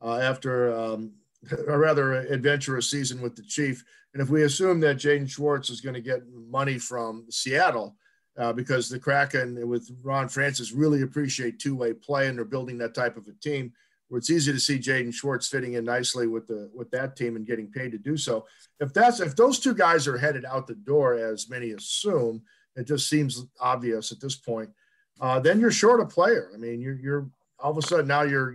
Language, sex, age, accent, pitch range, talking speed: English, male, 50-69, American, 120-150 Hz, 210 wpm